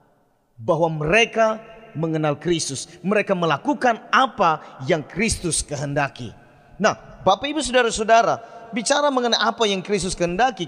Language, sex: Indonesian, male